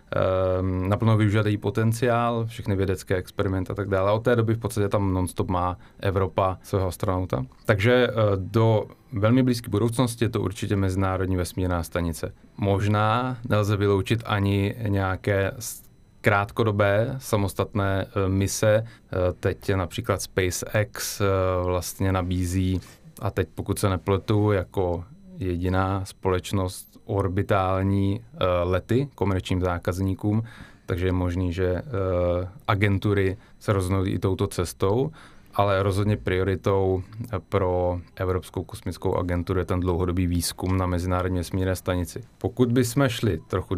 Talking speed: 120 wpm